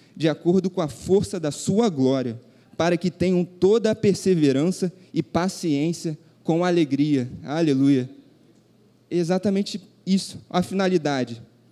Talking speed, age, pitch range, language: 120 wpm, 20-39, 155-195 Hz, Portuguese